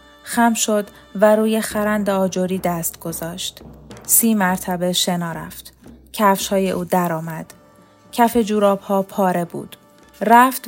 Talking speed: 125 wpm